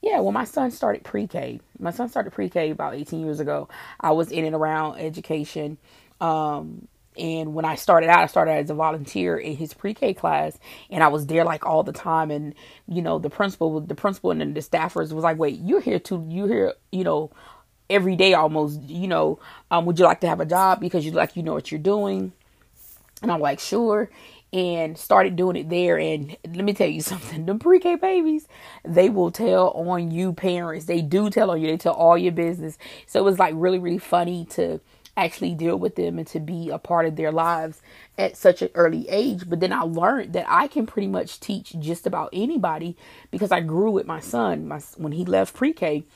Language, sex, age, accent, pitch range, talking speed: English, female, 20-39, American, 155-190 Hz, 220 wpm